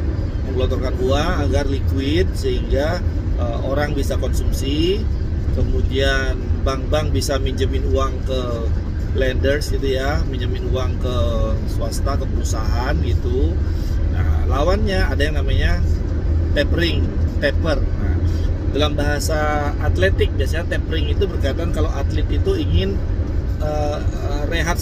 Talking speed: 110 wpm